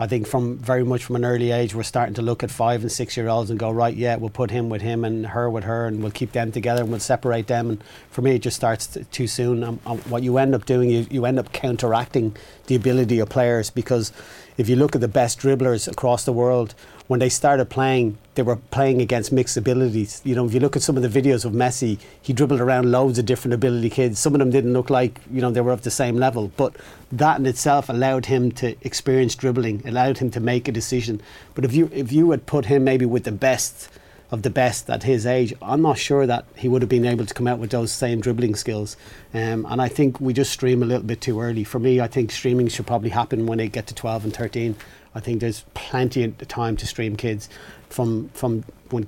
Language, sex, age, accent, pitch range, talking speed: English, male, 30-49, Irish, 115-130 Hz, 255 wpm